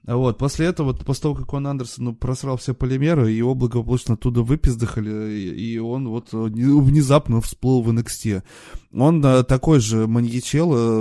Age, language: 20-39, Russian